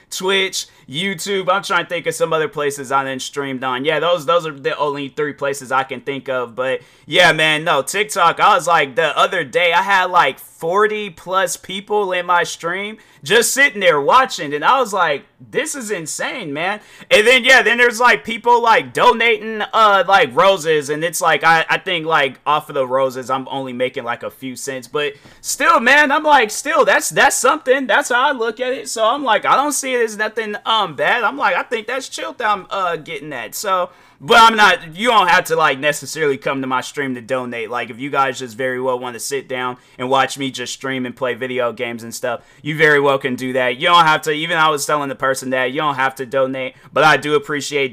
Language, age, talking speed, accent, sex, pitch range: English, 20-39, 235 wpm, American, male, 130-195 Hz